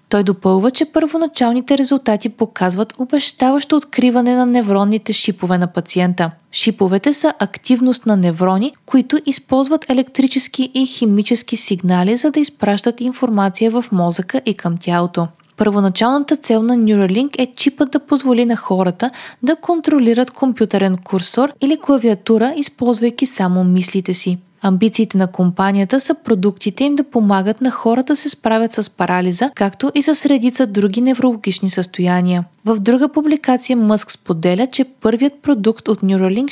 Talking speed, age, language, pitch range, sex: 140 wpm, 20-39, Bulgarian, 195-265 Hz, female